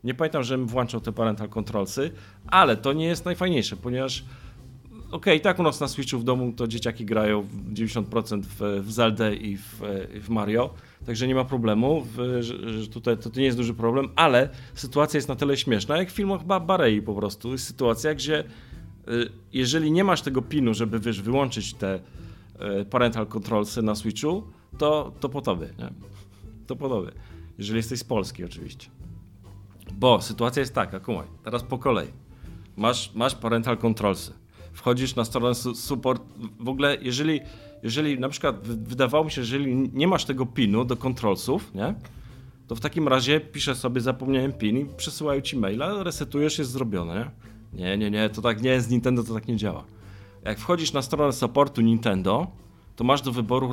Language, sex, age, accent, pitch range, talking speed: Polish, male, 40-59, native, 105-135 Hz, 175 wpm